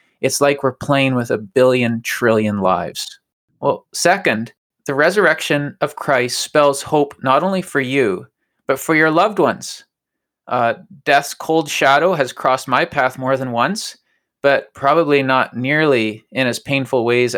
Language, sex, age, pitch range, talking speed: English, male, 20-39, 120-145 Hz, 155 wpm